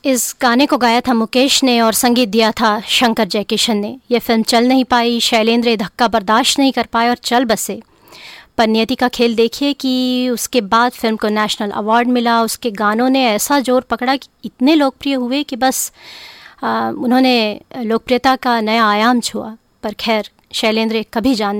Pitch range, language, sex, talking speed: 220-250 Hz, English, female, 175 wpm